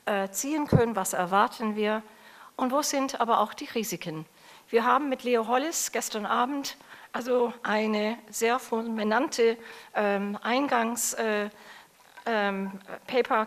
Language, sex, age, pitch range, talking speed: German, female, 40-59, 210-245 Hz, 105 wpm